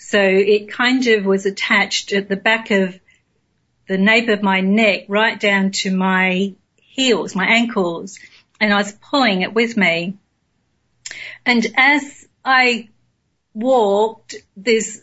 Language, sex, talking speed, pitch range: English, female, 135 wpm, 195-230 Hz